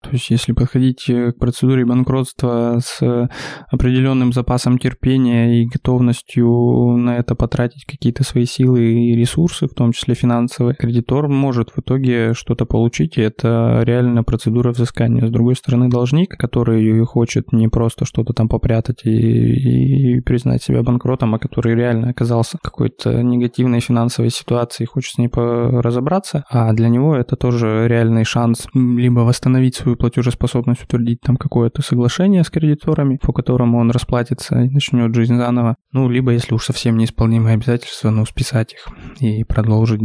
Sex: male